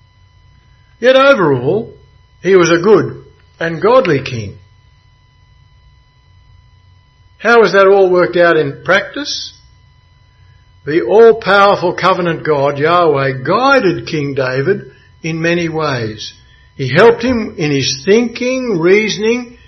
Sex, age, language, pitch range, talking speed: male, 60-79, English, 110-180 Hz, 105 wpm